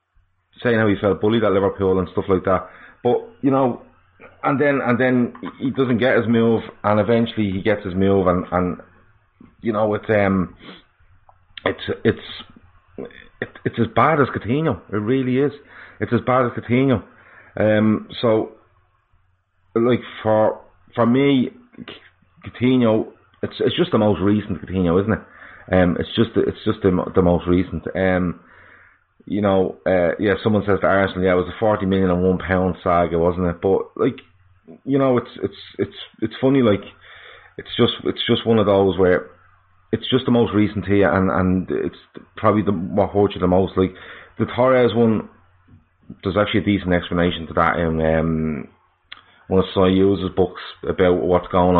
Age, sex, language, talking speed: 30-49, male, English, 175 wpm